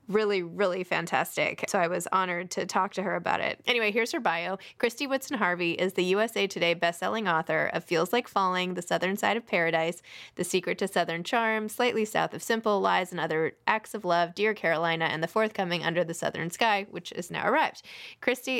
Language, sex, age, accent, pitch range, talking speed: English, female, 20-39, American, 175-220 Hz, 205 wpm